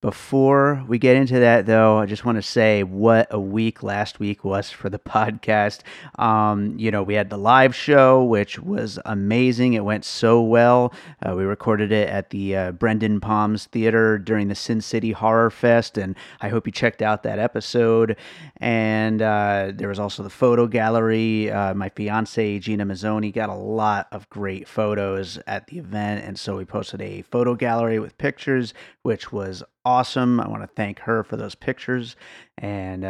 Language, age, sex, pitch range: English, 30-49, male, 105-120 Hz